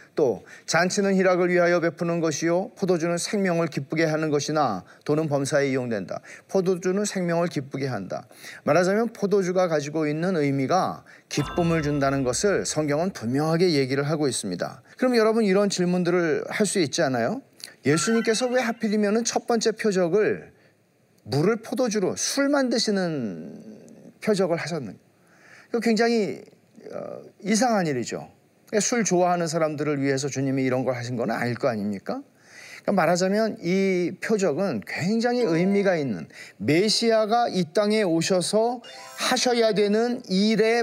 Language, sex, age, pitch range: Korean, male, 40-59, 155-215 Hz